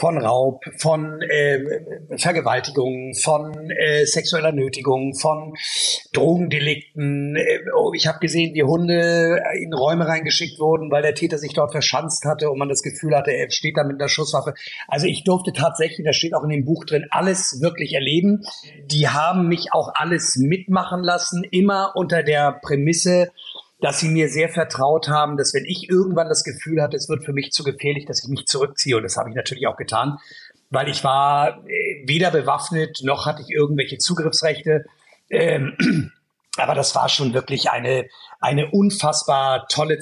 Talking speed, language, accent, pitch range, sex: 170 wpm, German, German, 140-160 Hz, male